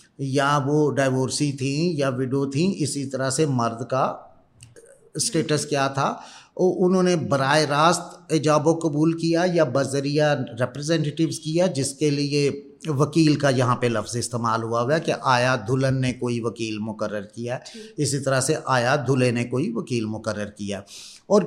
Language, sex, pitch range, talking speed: Urdu, male, 135-175 Hz, 160 wpm